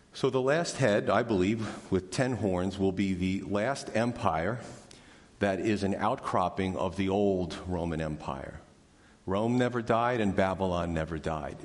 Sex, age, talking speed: male, 50-69, 155 wpm